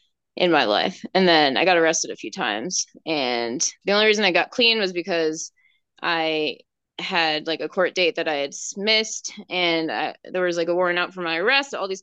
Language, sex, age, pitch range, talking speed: English, female, 20-39, 170-205 Hz, 215 wpm